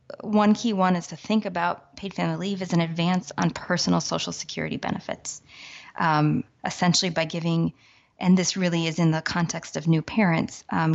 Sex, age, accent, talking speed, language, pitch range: female, 20-39, American, 180 wpm, English, 160-185 Hz